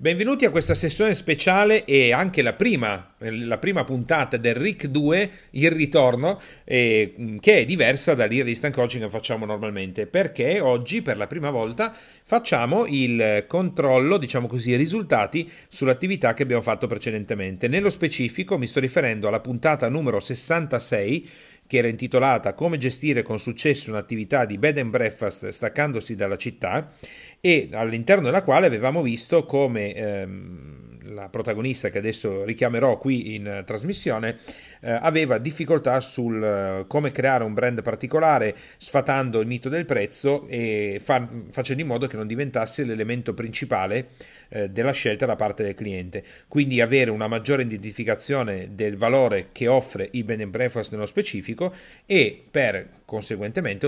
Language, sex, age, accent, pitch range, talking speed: Italian, male, 40-59, native, 110-150 Hz, 140 wpm